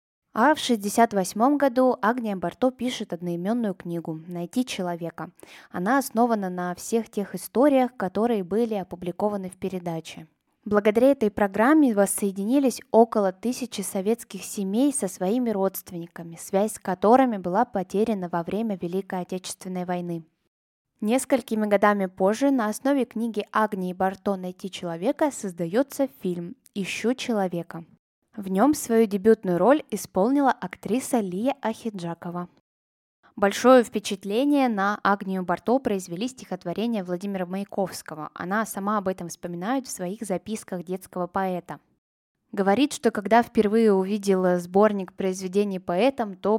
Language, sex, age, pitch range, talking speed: Russian, female, 20-39, 180-230 Hz, 120 wpm